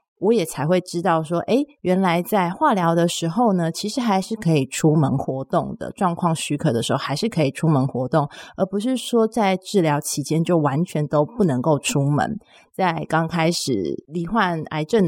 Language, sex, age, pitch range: Chinese, female, 30-49, 150-205 Hz